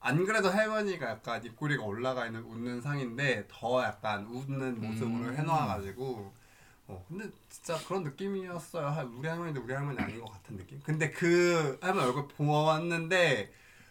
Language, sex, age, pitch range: Korean, male, 20-39, 115-155 Hz